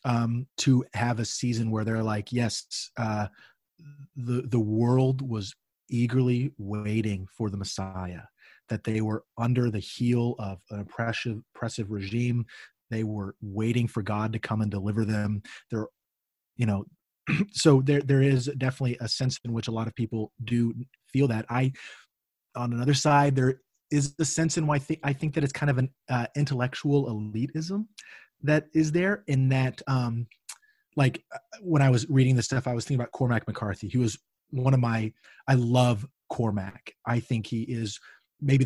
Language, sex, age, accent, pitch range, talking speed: English, male, 30-49, American, 110-135 Hz, 175 wpm